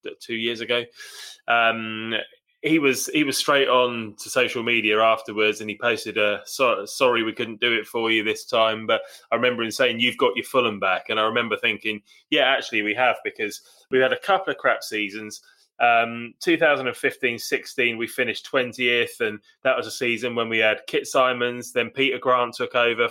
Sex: male